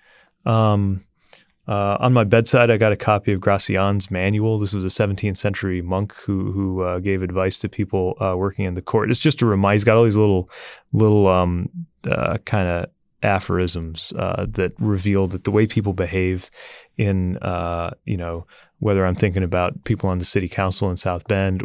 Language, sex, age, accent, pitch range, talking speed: English, male, 20-39, American, 90-105 Hz, 190 wpm